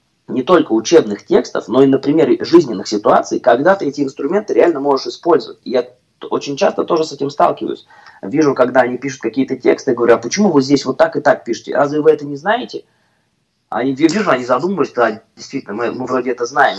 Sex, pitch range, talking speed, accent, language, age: male, 125-165 Hz, 200 wpm, native, Russian, 20-39